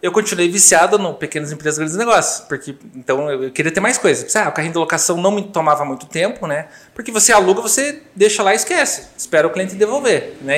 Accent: Brazilian